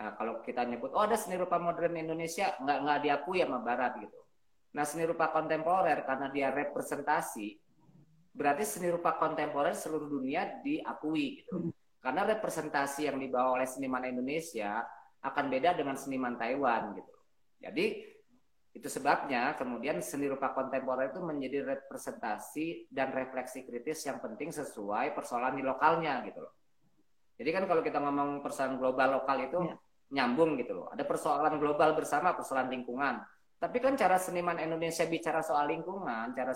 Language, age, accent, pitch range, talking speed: English, 20-39, Indonesian, 130-165 Hz, 150 wpm